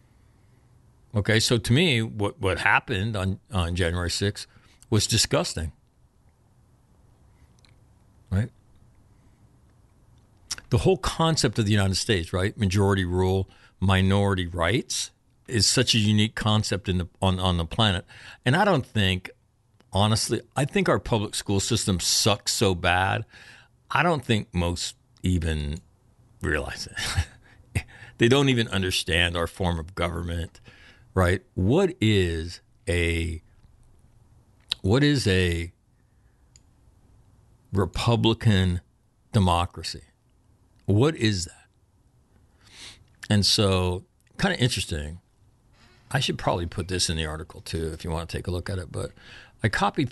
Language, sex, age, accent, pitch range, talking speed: English, male, 60-79, American, 90-115 Hz, 125 wpm